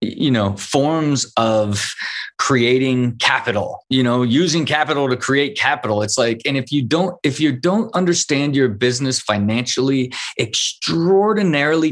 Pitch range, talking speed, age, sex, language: 120-150 Hz, 135 wpm, 20-39, male, English